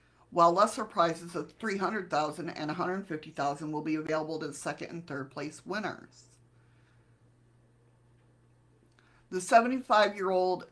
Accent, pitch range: American, 155-200 Hz